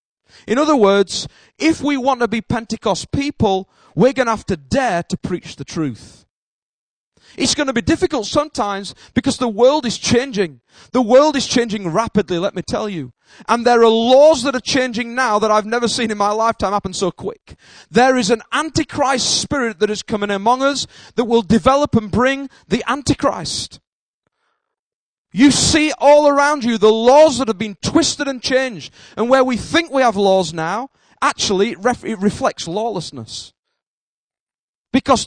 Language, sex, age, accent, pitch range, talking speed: English, male, 30-49, British, 205-275 Hz, 175 wpm